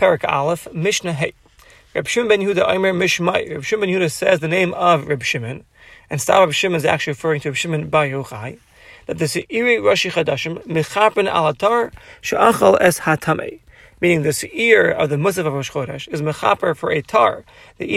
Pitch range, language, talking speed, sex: 155-200 Hz, English, 165 wpm, male